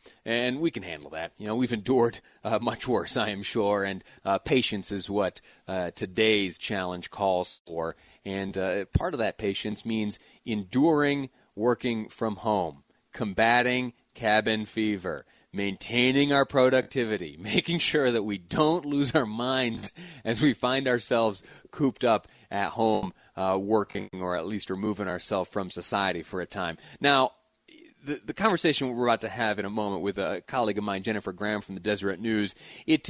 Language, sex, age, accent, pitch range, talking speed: English, male, 30-49, American, 105-145 Hz, 170 wpm